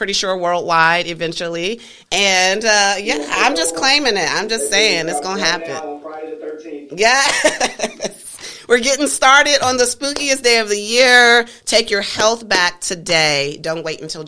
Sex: female